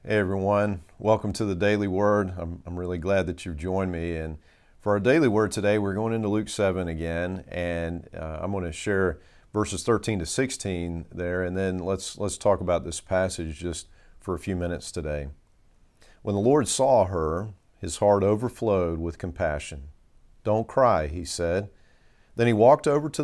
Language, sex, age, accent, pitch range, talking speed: English, male, 40-59, American, 85-100 Hz, 185 wpm